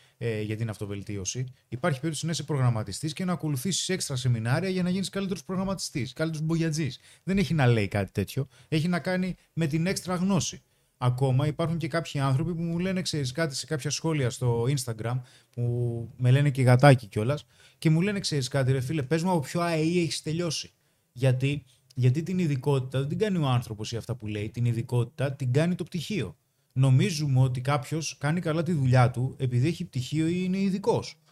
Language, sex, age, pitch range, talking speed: Greek, male, 30-49, 125-170 Hz, 195 wpm